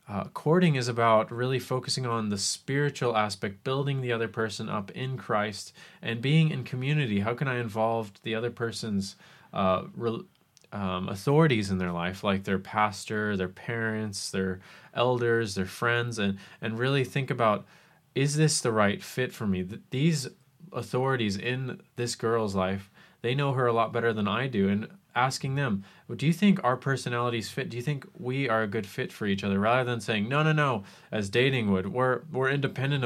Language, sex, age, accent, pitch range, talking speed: English, male, 20-39, American, 100-135 Hz, 185 wpm